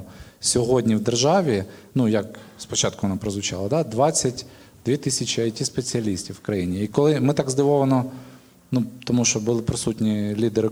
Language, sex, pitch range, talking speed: Ukrainian, male, 110-145 Hz, 140 wpm